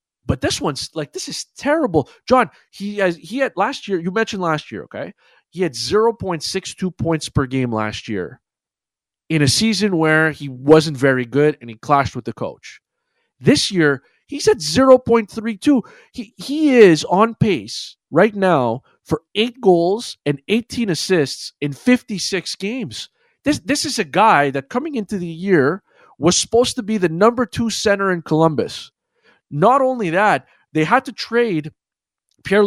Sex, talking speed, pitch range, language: male, 165 wpm, 155-230 Hz, English